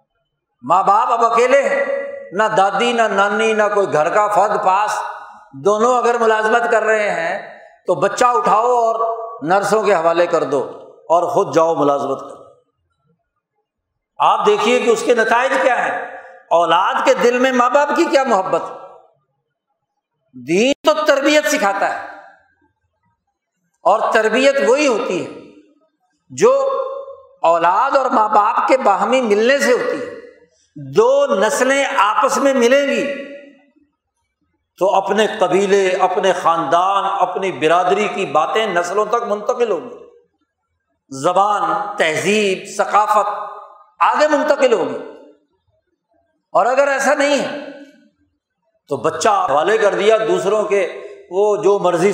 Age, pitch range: 60-79, 195-290 Hz